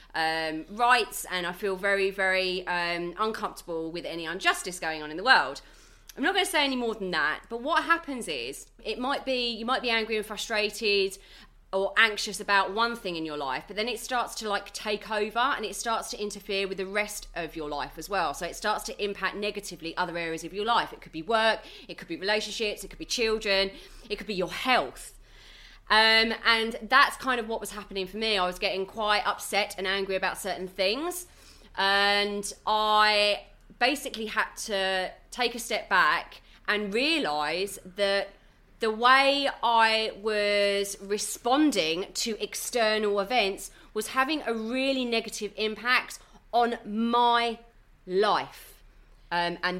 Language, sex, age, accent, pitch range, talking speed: English, female, 30-49, British, 190-230 Hz, 175 wpm